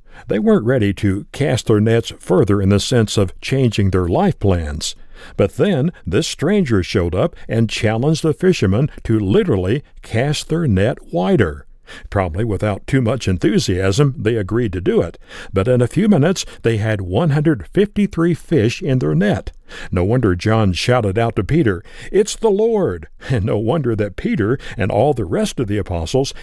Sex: male